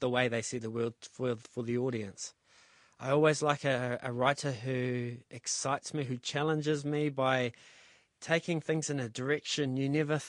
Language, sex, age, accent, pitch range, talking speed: English, male, 30-49, Australian, 125-145 Hz, 175 wpm